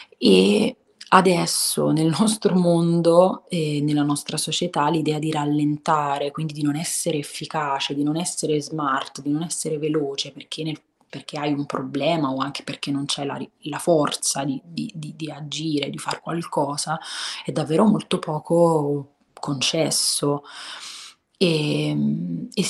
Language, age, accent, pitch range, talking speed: Italian, 30-49, native, 145-165 Hz, 140 wpm